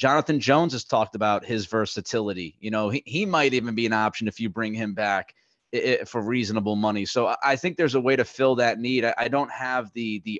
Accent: American